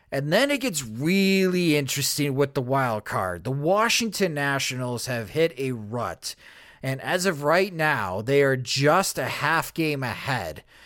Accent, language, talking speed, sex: American, English, 160 wpm, male